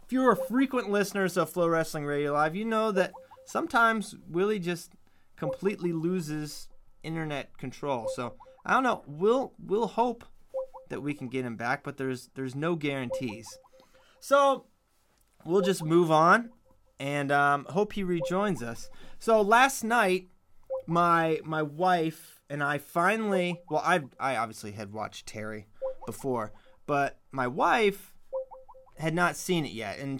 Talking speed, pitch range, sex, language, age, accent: 150 wpm, 140-195 Hz, male, English, 30-49, American